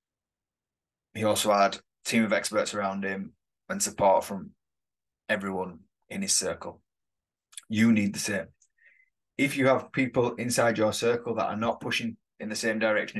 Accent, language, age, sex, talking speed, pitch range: British, English, 20-39, male, 160 wpm, 100-125 Hz